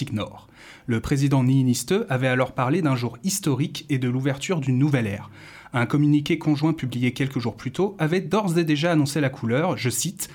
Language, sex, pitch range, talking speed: French, male, 130-160 Hz, 190 wpm